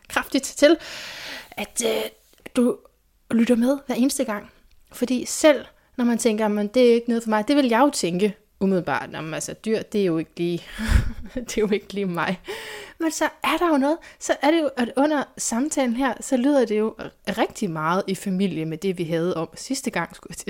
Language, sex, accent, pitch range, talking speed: Danish, female, native, 195-245 Hz, 215 wpm